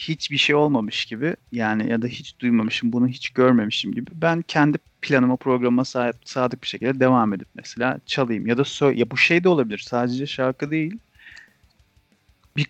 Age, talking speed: 40-59, 170 wpm